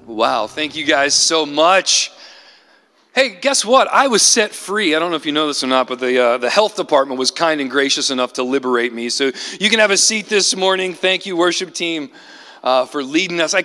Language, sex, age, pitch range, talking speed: English, male, 40-59, 135-190 Hz, 235 wpm